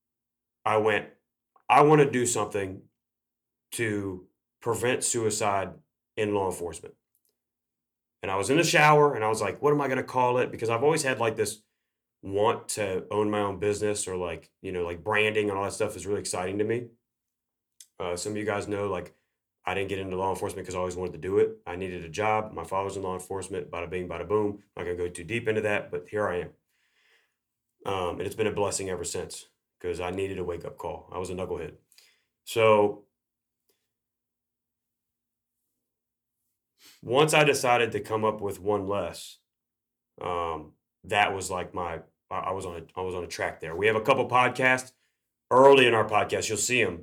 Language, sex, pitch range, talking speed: English, male, 95-120 Hz, 200 wpm